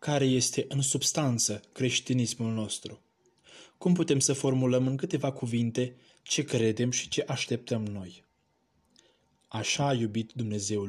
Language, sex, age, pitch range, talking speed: Romanian, male, 20-39, 120-145 Hz, 125 wpm